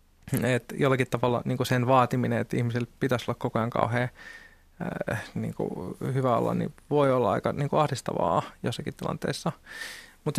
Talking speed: 150 wpm